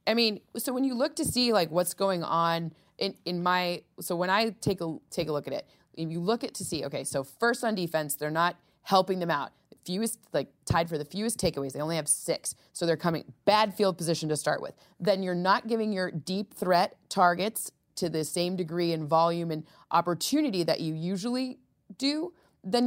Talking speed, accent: 220 wpm, American